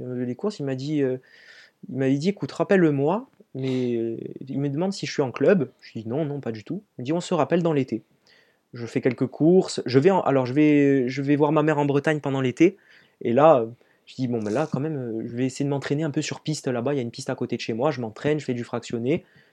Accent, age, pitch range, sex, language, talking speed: French, 20-39, 120-150 Hz, male, French, 275 wpm